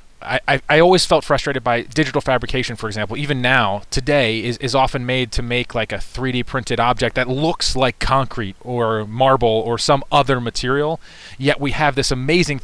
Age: 30-49